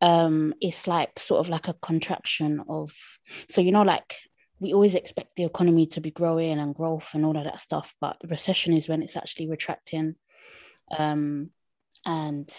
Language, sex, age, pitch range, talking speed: English, female, 20-39, 155-175 Hz, 180 wpm